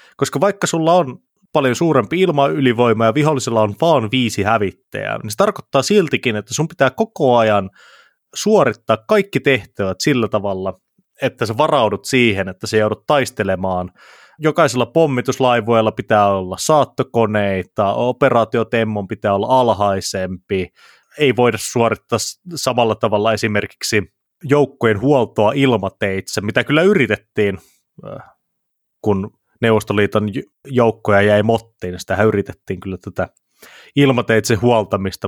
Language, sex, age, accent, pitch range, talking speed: Finnish, male, 30-49, native, 100-135 Hz, 115 wpm